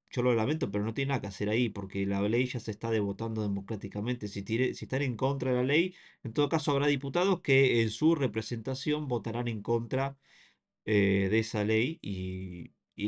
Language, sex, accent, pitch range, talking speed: Spanish, male, Argentinian, 105-130 Hz, 205 wpm